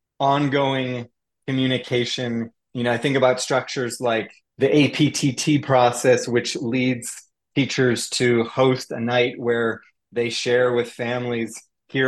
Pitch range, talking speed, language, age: 120-135 Hz, 125 wpm, English, 30-49